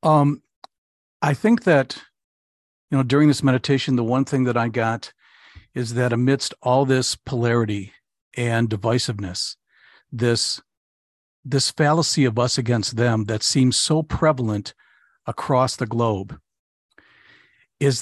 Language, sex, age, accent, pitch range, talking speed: English, male, 50-69, American, 120-145 Hz, 125 wpm